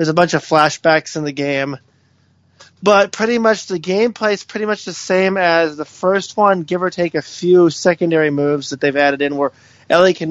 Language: English